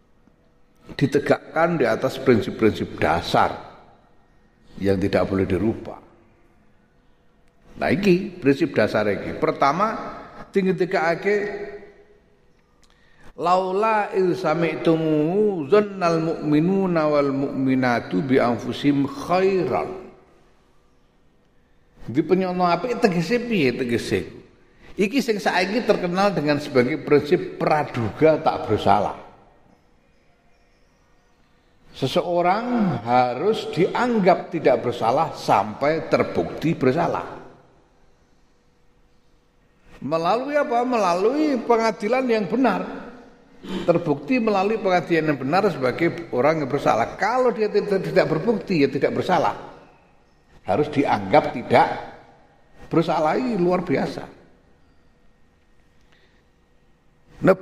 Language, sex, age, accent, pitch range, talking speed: Indonesian, male, 50-69, native, 130-210 Hz, 85 wpm